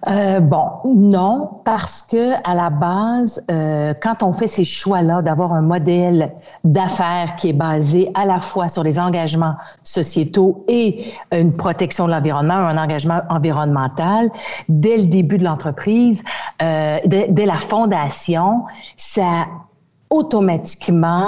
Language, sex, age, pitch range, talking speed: French, female, 50-69, 160-200 Hz, 135 wpm